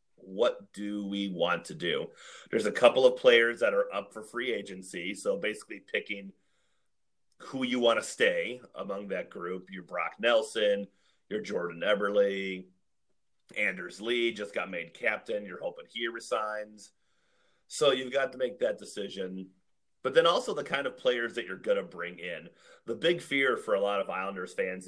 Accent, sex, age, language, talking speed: American, male, 30-49, English, 175 wpm